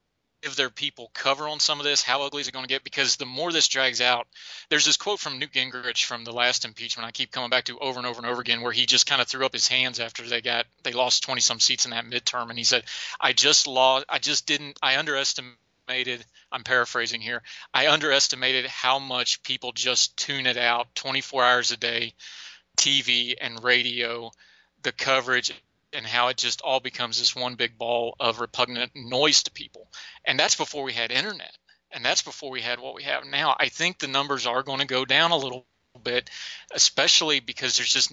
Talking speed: 225 wpm